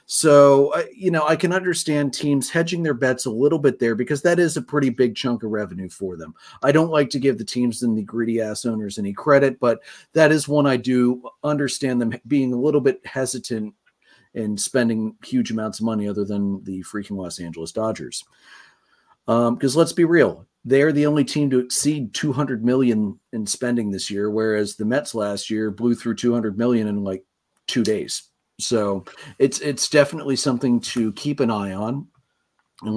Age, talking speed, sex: 40-59, 195 wpm, male